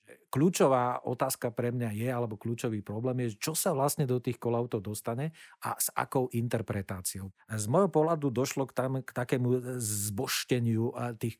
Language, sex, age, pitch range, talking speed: Slovak, male, 40-59, 115-130 Hz, 160 wpm